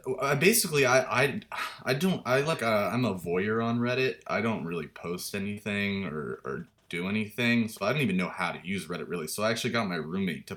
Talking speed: 220 wpm